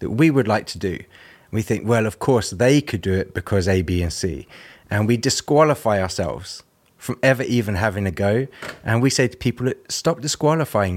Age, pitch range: 30-49, 100-125 Hz